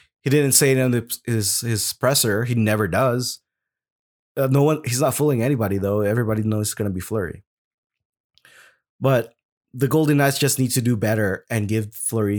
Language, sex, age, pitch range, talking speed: English, male, 20-39, 115-140 Hz, 180 wpm